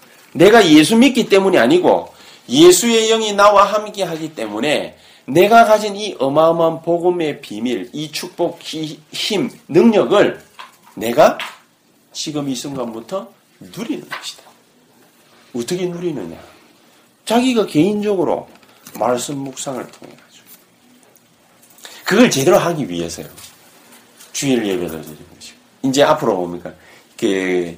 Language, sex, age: Korean, male, 40-59